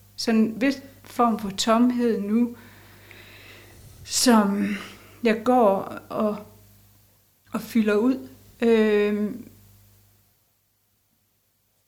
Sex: female